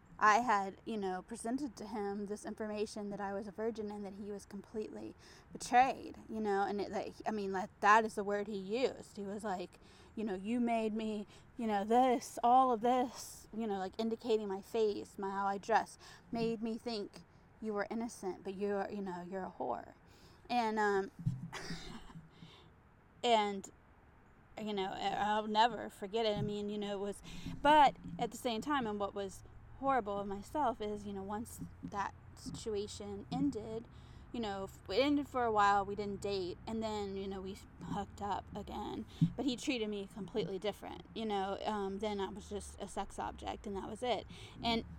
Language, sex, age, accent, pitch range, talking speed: English, female, 20-39, American, 195-230 Hz, 190 wpm